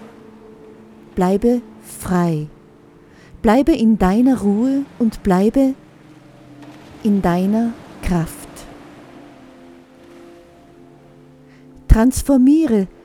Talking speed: 55 wpm